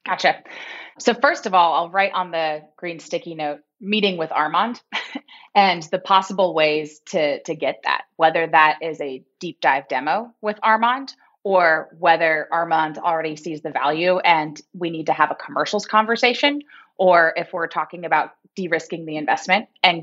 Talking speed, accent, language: 170 wpm, American, English